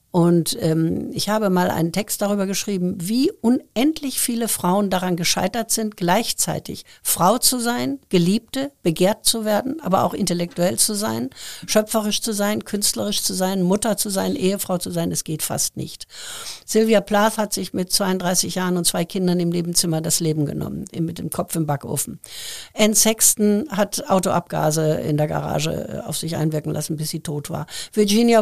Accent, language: German, German